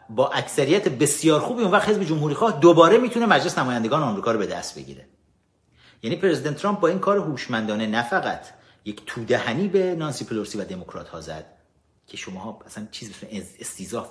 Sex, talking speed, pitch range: male, 175 wpm, 100-160 Hz